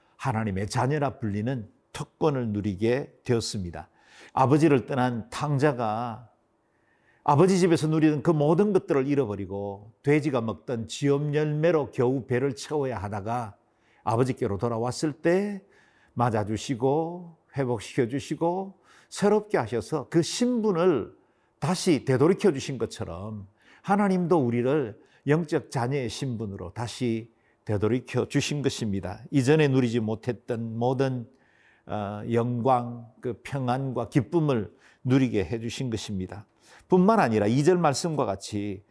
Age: 50-69